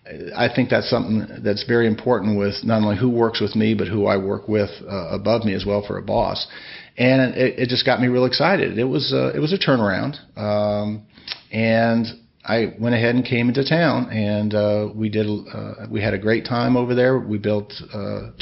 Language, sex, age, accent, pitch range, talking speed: English, male, 50-69, American, 105-125 Hz, 215 wpm